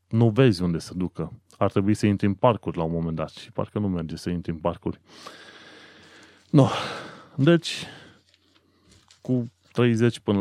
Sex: male